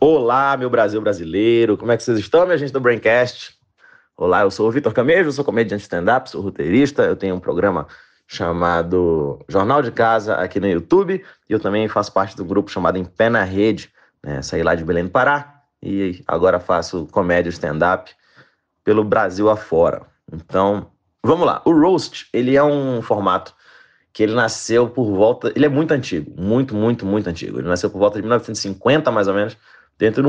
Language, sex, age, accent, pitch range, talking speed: Portuguese, male, 30-49, Brazilian, 100-125 Hz, 190 wpm